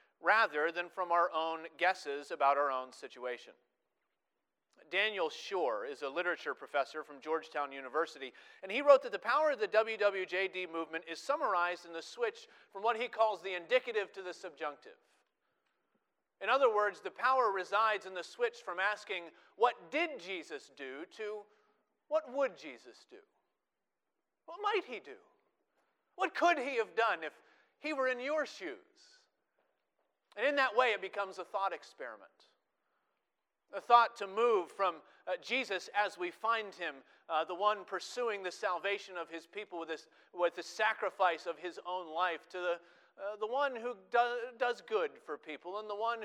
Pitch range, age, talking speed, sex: 175-260 Hz, 40-59, 165 wpm, male